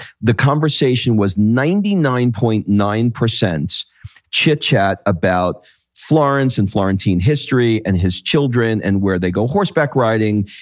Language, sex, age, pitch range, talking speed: English, male, 40-59, 95-130 Hz, 135 wpm